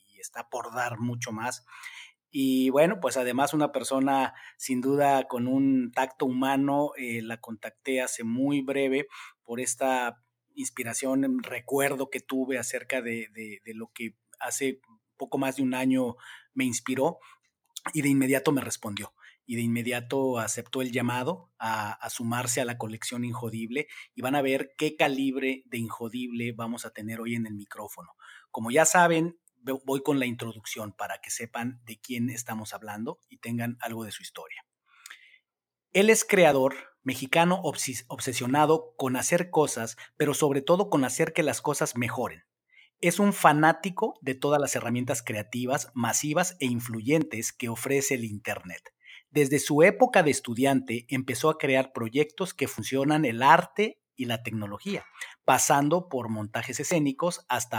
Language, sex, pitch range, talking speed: Spanish, male, 115-145 Hz, 155 wpm